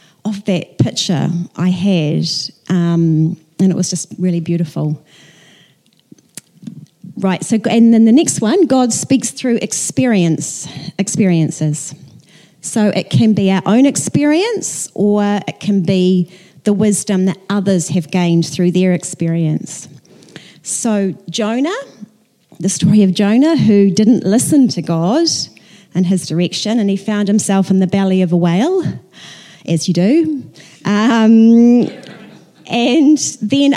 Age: 30-49